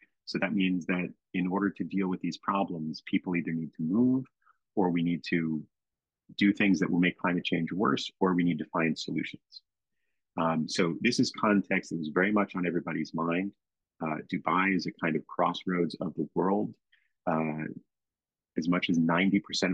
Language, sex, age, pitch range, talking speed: English, male, 30-49, 85-100 Hz, 185 wpm